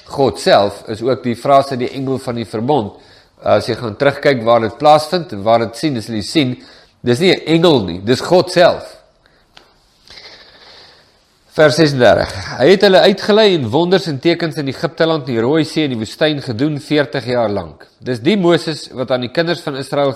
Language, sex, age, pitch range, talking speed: English, male, 50-69, 125-160 Hz, 190 wpm